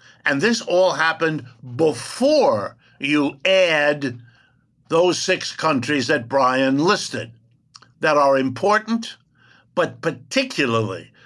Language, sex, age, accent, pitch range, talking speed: English, male, 60-79, American, 130-165 Hz, 95 wpm